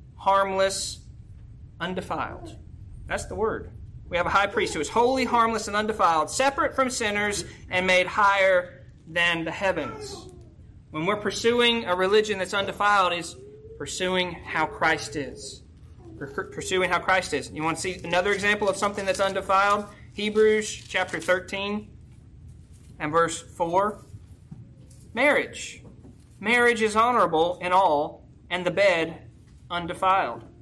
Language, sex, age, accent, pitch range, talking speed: English, male, 30-49, American, 175-235 Hz, 135 wpm